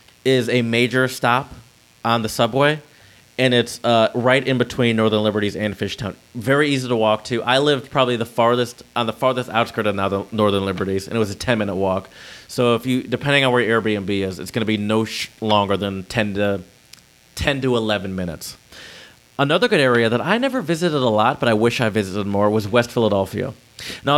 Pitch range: 110-135 Hz